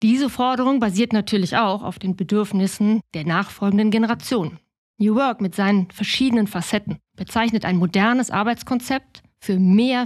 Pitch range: 185-240 Hz